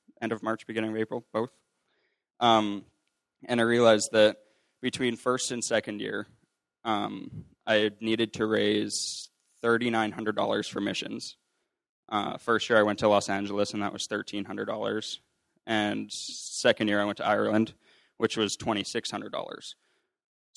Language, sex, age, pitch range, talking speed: English, male, 20-39, 105-130 Hz, 135 wpm